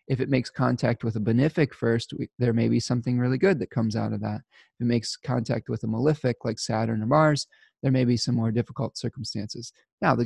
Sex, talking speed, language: male, 230 wpm, English